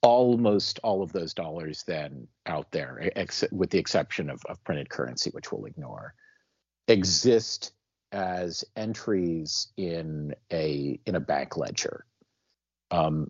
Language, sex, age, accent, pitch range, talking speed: English, male, 50-69, American, 75-95 Hz, 125 wpm